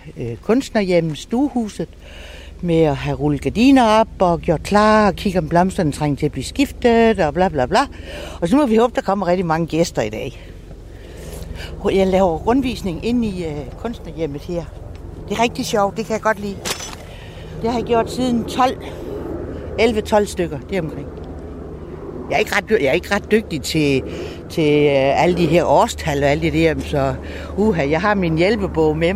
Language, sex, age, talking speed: Danish, female, 60-79, 175 wpm